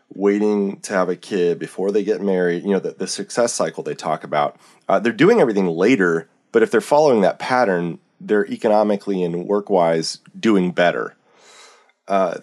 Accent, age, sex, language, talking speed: American, 30-49, male, English, 170 wpm